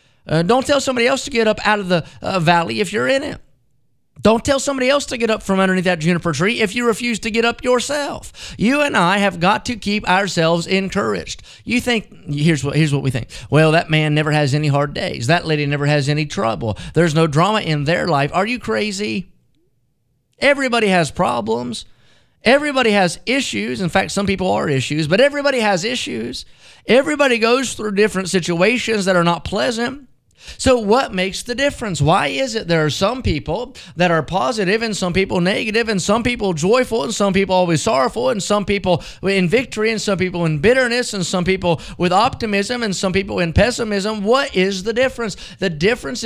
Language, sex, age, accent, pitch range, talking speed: English, male, 30-49, American, 170-230 Hz, 200 wpm